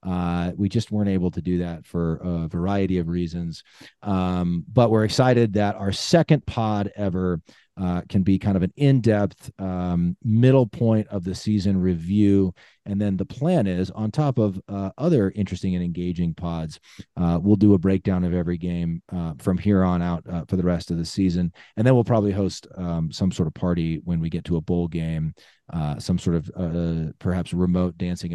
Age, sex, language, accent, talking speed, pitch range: 30-49, male, English, American, 200 wpm, 90-110 Hz